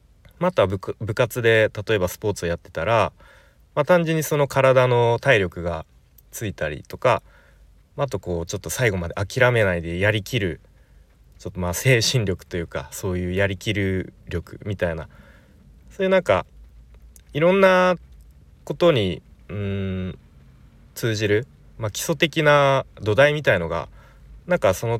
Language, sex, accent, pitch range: Japanese, male, native, 90-135 Hz